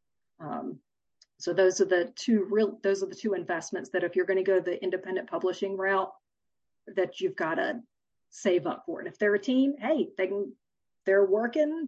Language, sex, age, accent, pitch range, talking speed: English, female, 40-59, American, 195-255 Hz, 190 wpm